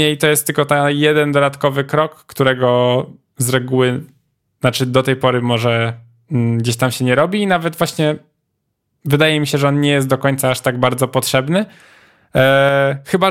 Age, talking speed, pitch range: 10-29, 170 wpm, 125-145 Hz